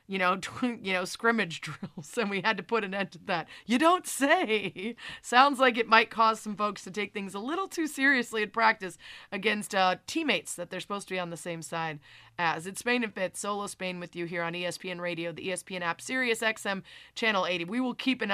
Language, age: English, 30-49